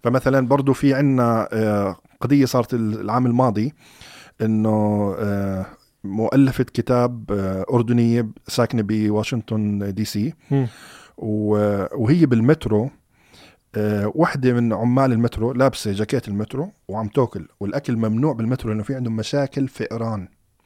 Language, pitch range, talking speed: Arabic, 105-130 Hz, 100 wpm